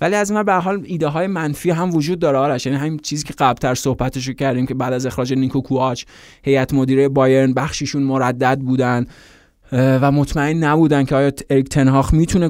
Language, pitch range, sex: Persian, 135-160 Hz, male